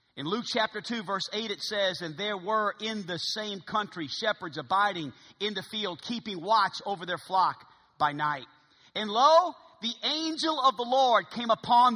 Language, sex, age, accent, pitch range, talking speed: English, male, 40-59, American, 180-245 Hz, 180 wpm